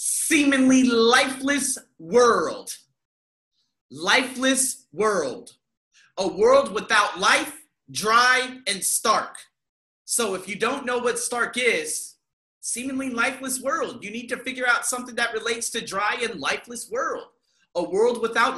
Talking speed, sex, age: 125 wpm, male, 30-49